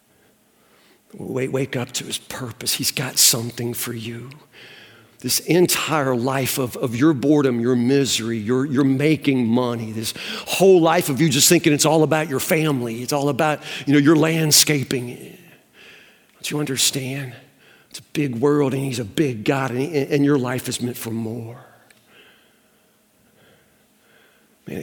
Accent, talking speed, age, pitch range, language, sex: American, 155 wpm, 50-69, 120-150 Hz, English, male